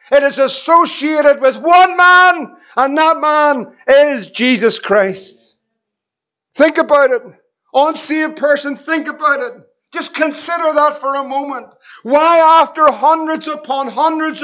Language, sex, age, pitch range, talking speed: English, male, 50-69, 235-310 Hz, 135 wpm